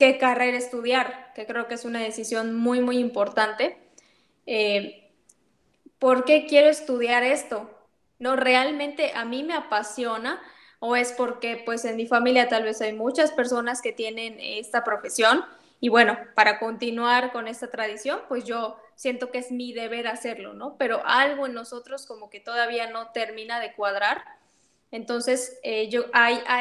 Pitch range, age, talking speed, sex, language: 220-255 Hz, 10-29, 160 wpm, female, Spanish